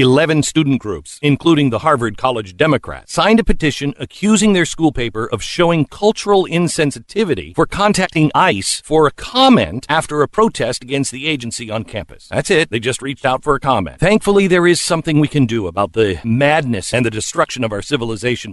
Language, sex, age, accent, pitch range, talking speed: English, male, 50-69, American, 125-180 Hz, 190 wpm